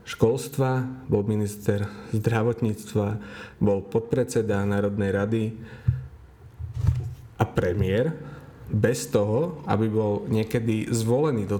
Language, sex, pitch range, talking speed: Slovak, male, 105-125 Hz, 90 wpm